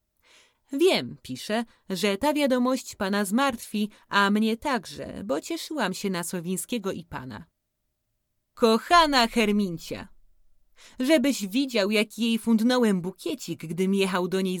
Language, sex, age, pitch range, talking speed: Polish, female, 30-49, 180-255 Hz, 120 wpm